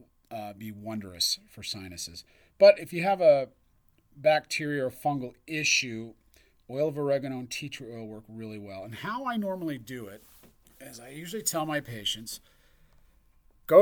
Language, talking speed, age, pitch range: English, 160 wpm, 40-59, 110-140 Hz